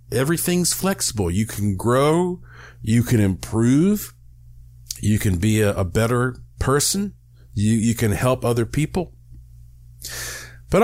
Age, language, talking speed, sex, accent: 50-69, English, 120 wpm, male, American